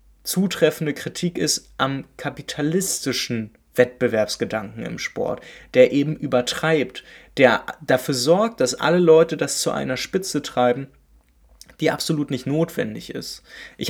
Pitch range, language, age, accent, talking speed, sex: 125-160 Hz, German, 20-39, German, 120 wpm, male